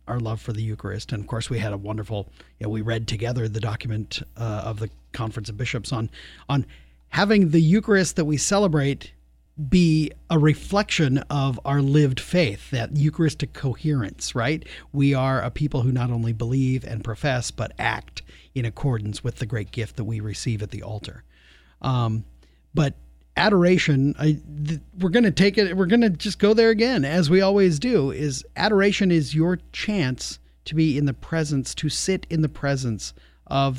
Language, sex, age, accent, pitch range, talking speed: English, male, 40-59, American, 110-150 Hz, 185 wpm